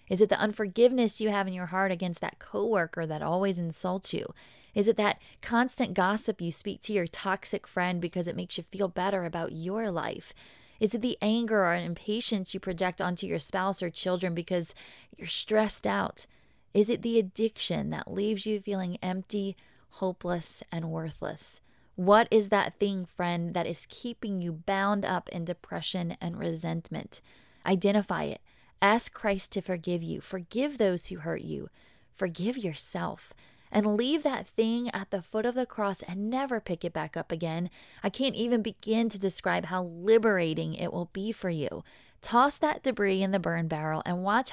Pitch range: 180-215 Hz